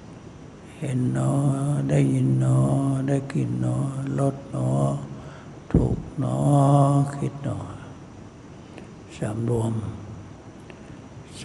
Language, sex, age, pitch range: Thai, male, 60-79, 120-140 Hz